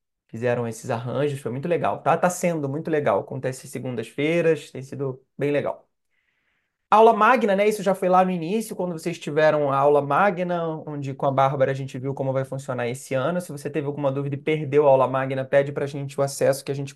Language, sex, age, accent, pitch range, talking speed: Portuguese, male, 20-39, Brazilian, 135-165 Hz, 220 wpm